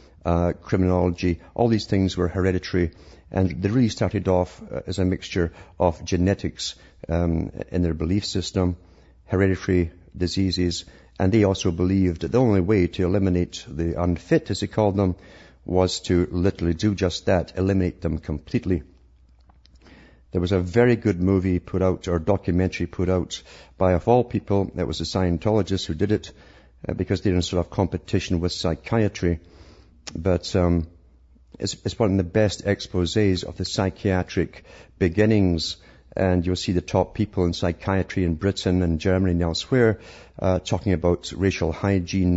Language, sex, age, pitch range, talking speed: English, male, 50-69, 85-95 Hz, 160 wpm